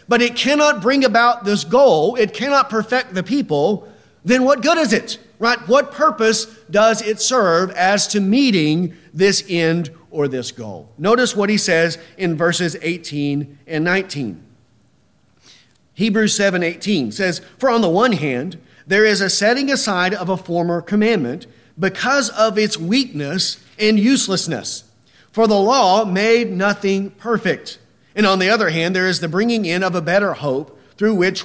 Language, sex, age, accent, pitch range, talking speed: English, male, 40-59, American, 170-235 Hz, 165 wpm